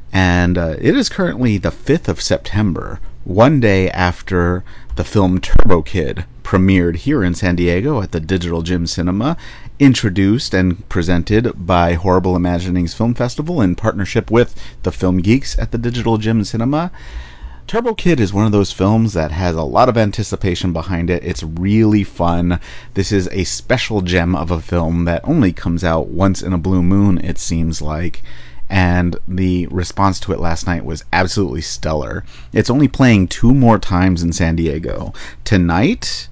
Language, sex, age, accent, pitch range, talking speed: English, male, 30-49, American, 85-105 Hz, 170 wpm